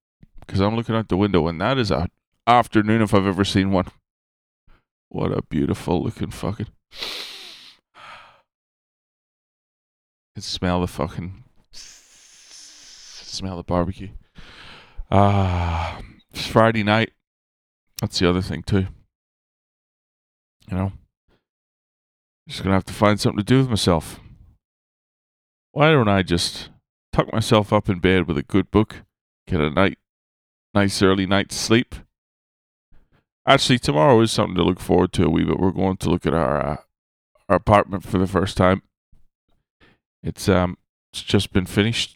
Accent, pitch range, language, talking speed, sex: American, 85-110 Hz, English, 145 wpm, male